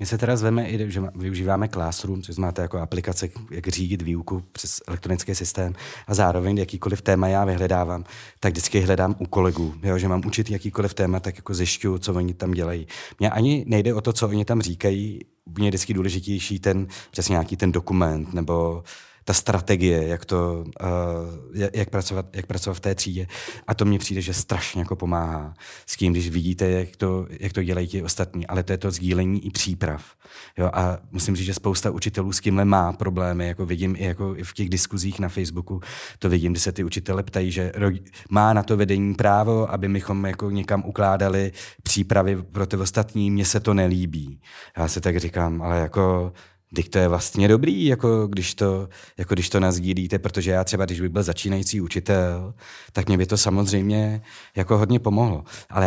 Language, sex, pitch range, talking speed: Czech, male, 90-105 Hz, 190 wpm